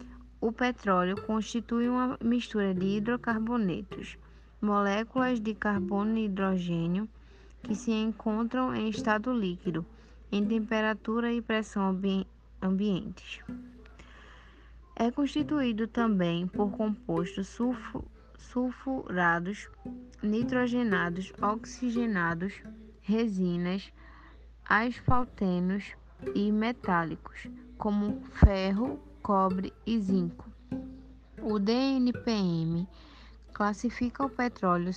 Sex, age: female, 10-29